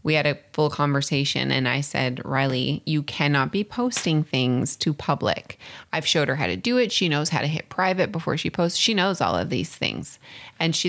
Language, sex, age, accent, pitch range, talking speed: English, female, 20-39, American, 140-170 Hz, 220 wpm